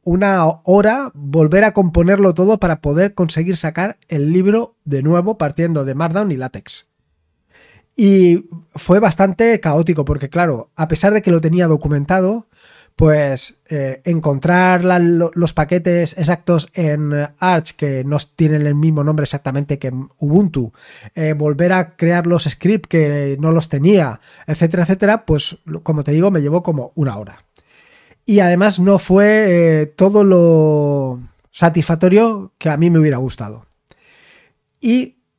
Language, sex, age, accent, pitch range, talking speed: Spanish, male, 30-49, Spanish, 145-190 Hz, 145 wpm